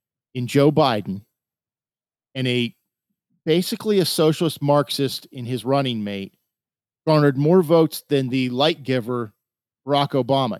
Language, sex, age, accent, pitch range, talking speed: English, male, 50-69, American, 140-195 Hz, 125 wpm